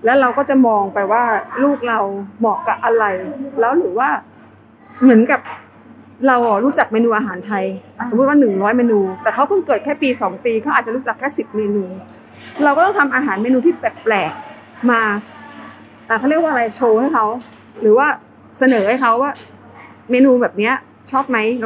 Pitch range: 225-280 Hz